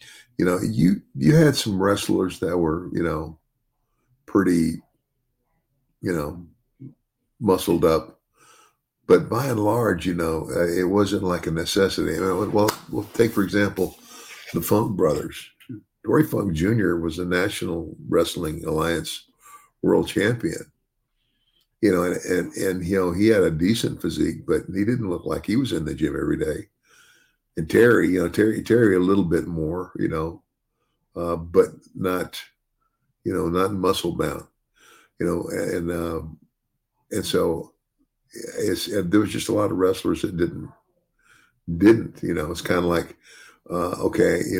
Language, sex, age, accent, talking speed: English, male, 50-69, American, 160 wpm